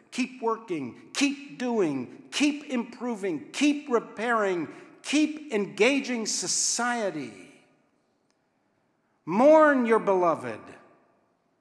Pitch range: 155-250 Hz